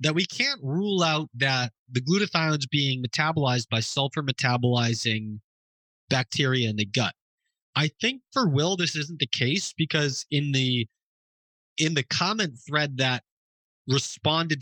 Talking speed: 140 wpm